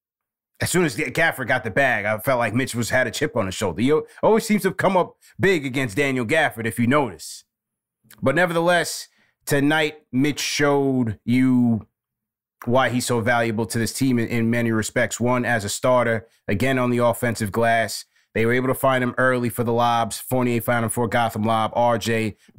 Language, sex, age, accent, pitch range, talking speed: English, male, 20-39, American, 115-130 Hz, 200 wpm